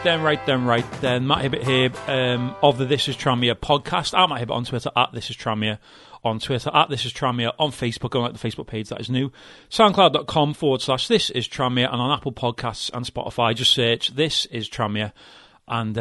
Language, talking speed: English, 215 wpm